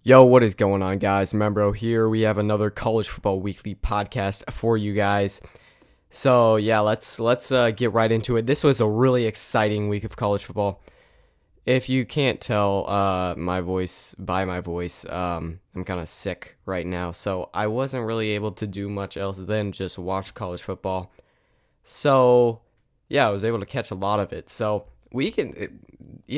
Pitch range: 95-115 Hz